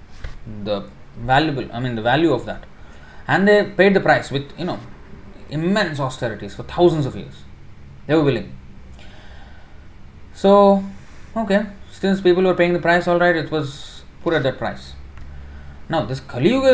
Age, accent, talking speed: 20-39, Indian, 160 wpm